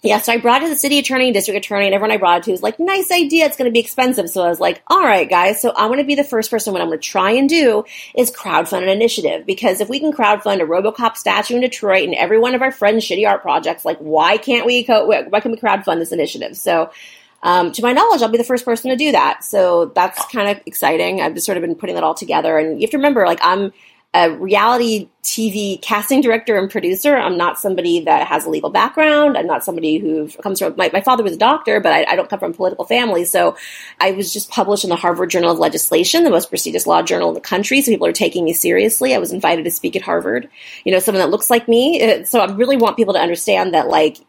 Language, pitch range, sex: English, 175-245 Hz, female